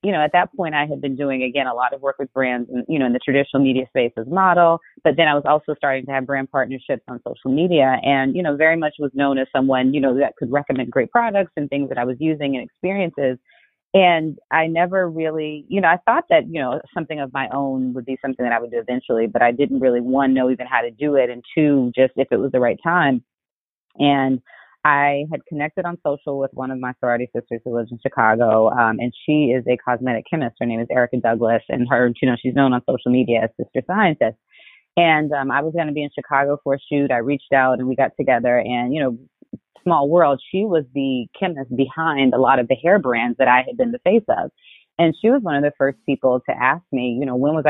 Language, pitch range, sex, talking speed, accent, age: English, 125-150 Hz, female, 255 wpm, American, 30-49